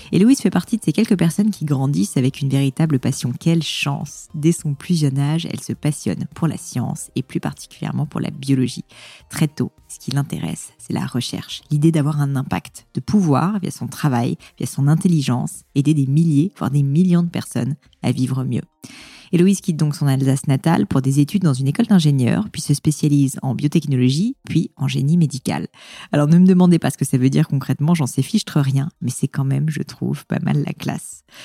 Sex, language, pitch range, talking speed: female, French, 135-170 Hz, 210 wpm